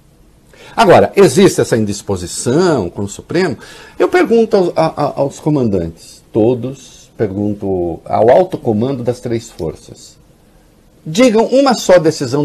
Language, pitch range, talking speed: Portuguese, 125-185 Hz, 110 wpm